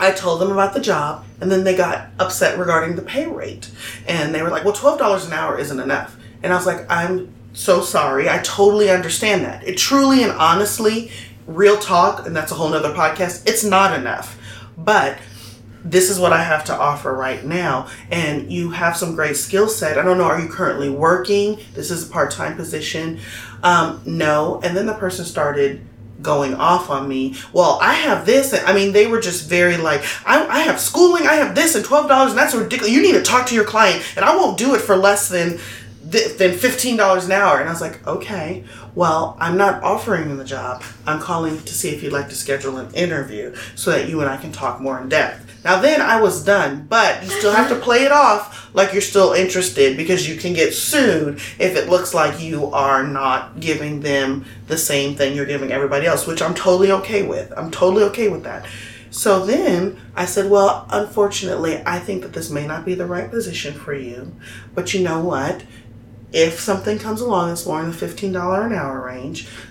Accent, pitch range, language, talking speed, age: American, 140-200 Hz, English, 215 wpm, 30-49